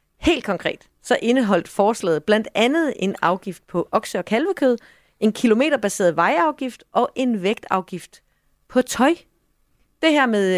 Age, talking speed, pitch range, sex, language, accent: 30-49, 135 wpm, 170-235 Hz, female, Danish, native